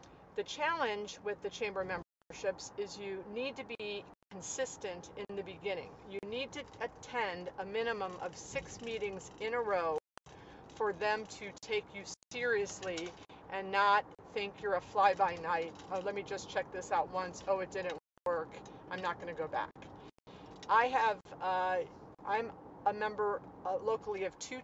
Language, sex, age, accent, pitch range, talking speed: English, female, 40-59, American, 185-225 Hz, 165 wpm